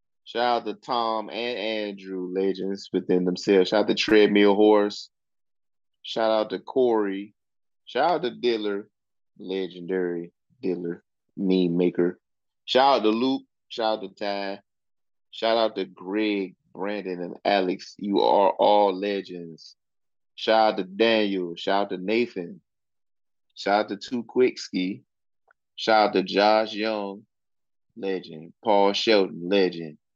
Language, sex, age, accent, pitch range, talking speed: English, male, 30-49, American, 95-110 Hz, 135 wpm